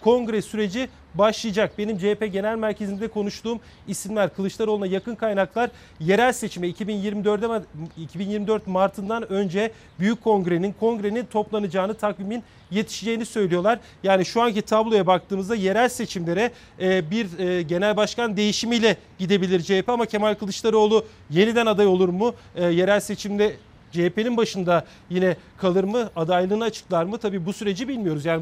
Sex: male